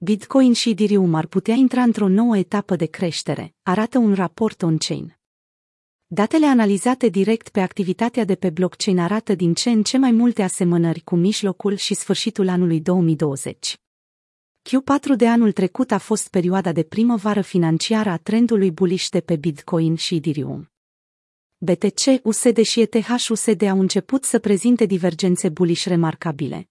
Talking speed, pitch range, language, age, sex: 150 wpm, 180-225 Hz, Romanian, 30-49, female